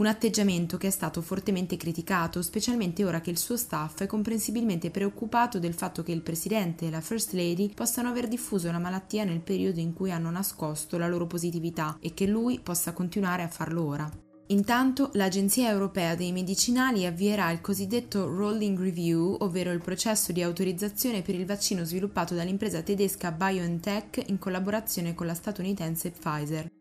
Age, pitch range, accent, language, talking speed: 20-39, 170-210 Hz, native, Italian, 170 wpm